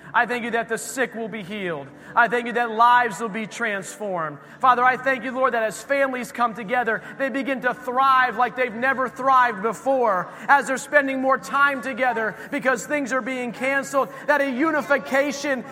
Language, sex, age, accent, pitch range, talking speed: English, male, 40-59, American, 230-280 Hz, 190 wpm